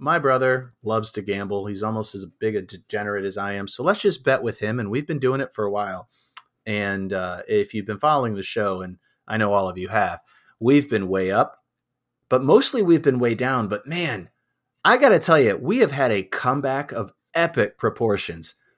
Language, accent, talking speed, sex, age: English, American, 215 wpm, male, 30-49